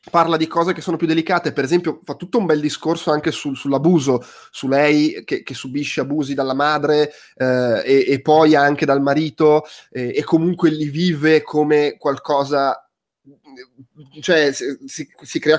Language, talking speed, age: Italian, 160 wpm, 20-39